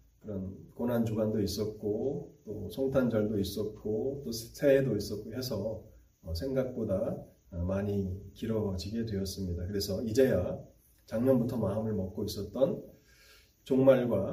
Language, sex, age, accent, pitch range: Korean, male, 30-49, native, 100-135 Hz